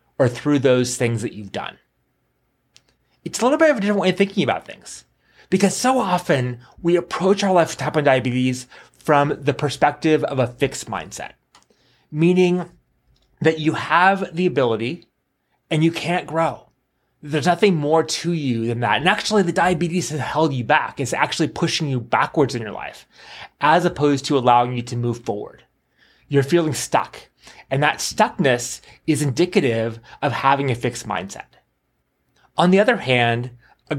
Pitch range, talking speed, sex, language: 125-175 Hz, 170 wpm, male, English